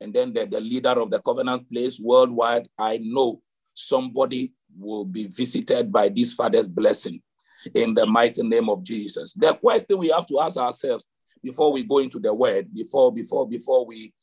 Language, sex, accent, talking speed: English, male, Nigerian, 180 wpm